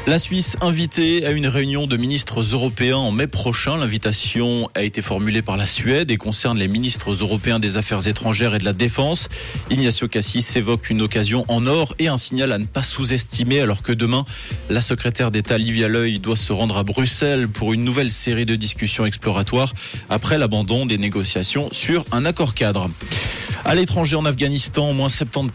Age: 20-39